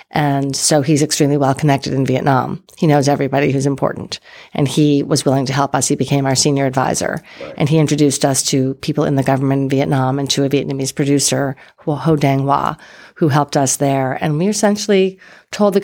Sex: female